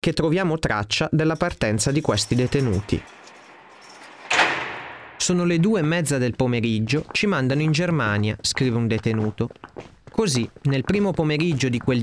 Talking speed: 140 wpm